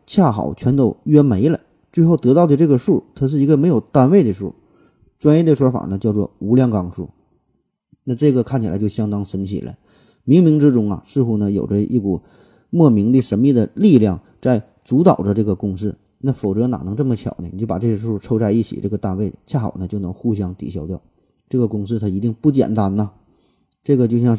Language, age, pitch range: Chinese, 30-49, 100-125 Hz